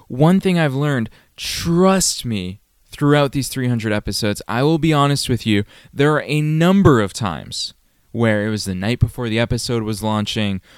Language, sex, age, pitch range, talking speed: English, male, 20-39, 105-150 Hz, 180 wpm